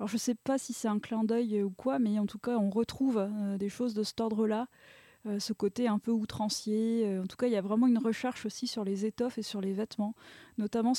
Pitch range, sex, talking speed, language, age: 205-235 Hz, female, 260 wpm, French, 20-39